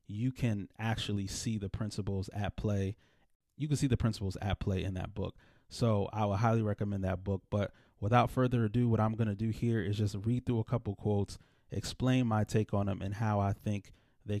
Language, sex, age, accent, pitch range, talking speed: English, male, 20-39, American, 100-115 Hz, 215 wpm